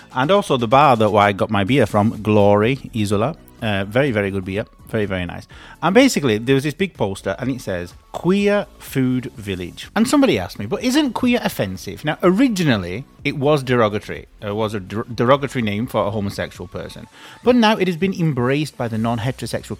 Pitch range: 100-150 Hz